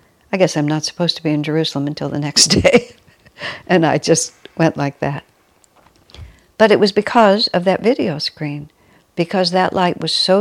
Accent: American